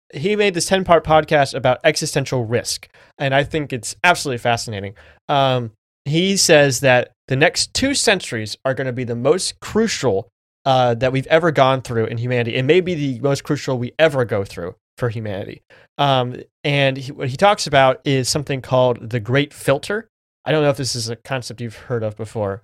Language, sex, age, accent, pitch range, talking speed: English, male, 20-39, American, 125-160 Hz, 200 wpm